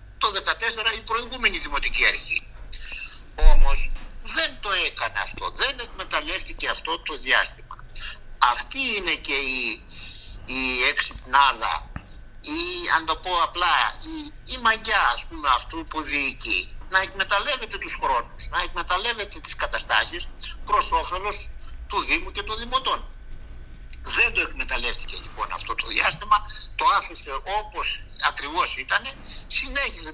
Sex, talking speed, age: male, 125 wpm, 60-79